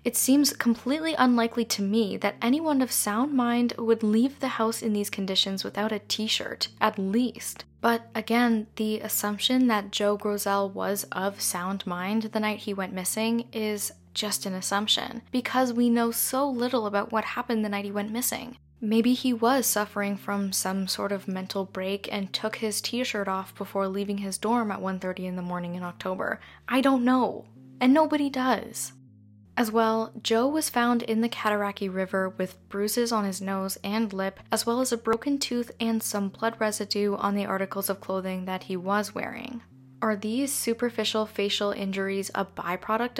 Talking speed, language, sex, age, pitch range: 180 wpm, English, female, 10-29, 195-235 Hz